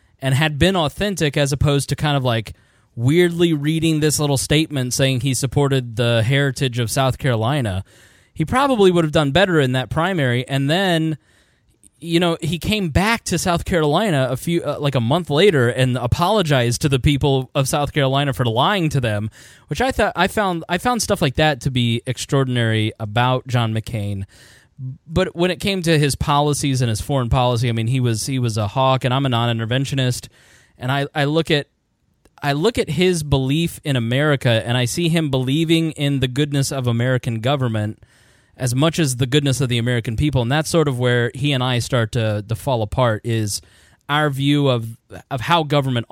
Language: English